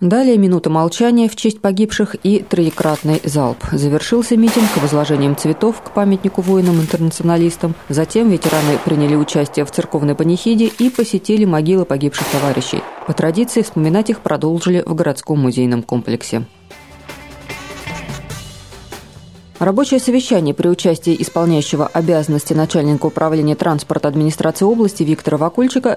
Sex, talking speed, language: female, 120 wpm, Russian